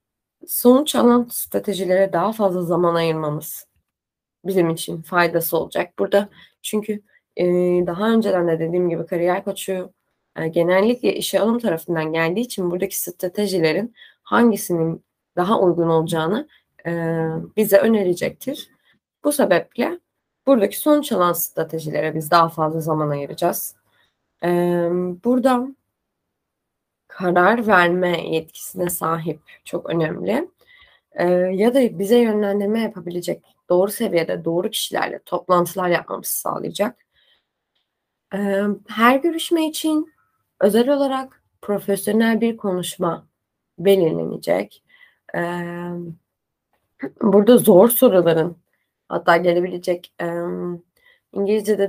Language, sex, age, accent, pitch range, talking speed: Turkish, female, 20-39, native, 170-220 Hz, 95 wpm